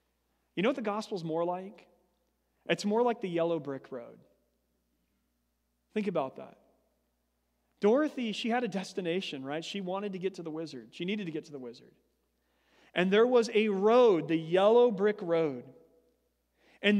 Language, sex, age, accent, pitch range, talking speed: English, male, 40-59, American, 160-205 Hz, 165 wpm